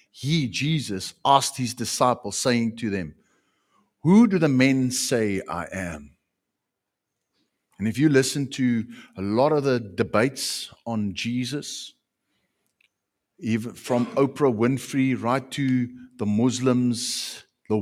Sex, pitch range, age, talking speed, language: male, 105-140 Hz, 60-79, 120 wpm, English